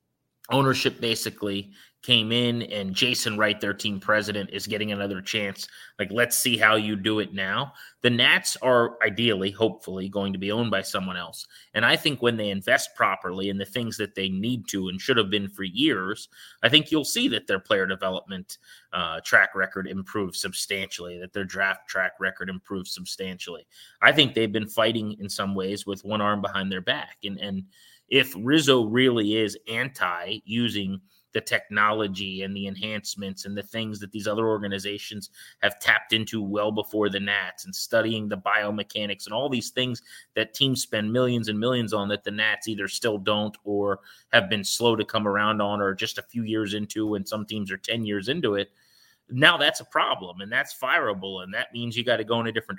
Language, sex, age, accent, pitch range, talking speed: English, male, 30-49, American, 100-115 Hz, 200 wpm